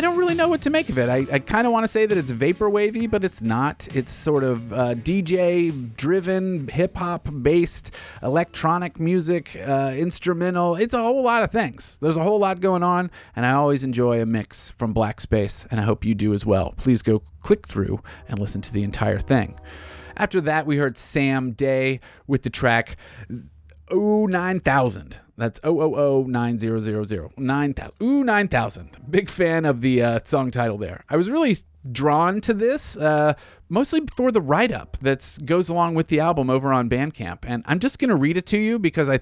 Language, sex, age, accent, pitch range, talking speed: English, male, 30-49, American, 115-175 Hz, 190 wpm